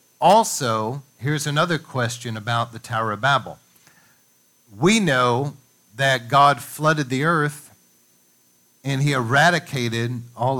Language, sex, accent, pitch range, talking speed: English, male, American, 110-145 Hz, 115 wpm